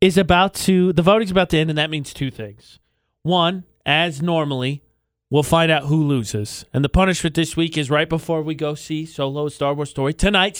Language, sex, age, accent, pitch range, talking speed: English, male, 30-49, American, 140-185 Hz, 210 wpm